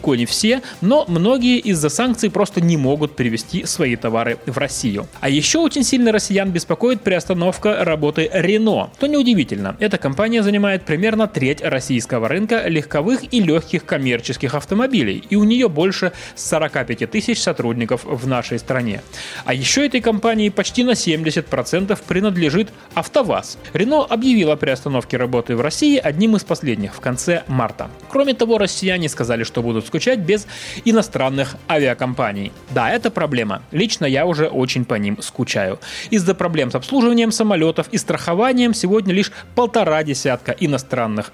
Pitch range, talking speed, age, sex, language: 130-220 Hz, 145 wpm, 20-39, male, Russian